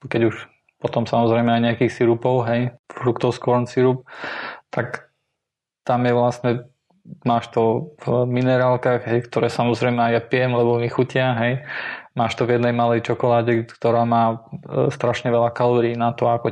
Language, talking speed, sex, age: Slovak, 155 wpm, male, 20-39